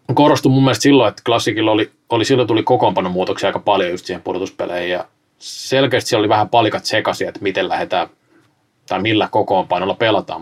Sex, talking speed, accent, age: male, 175 wpm, native, 20-39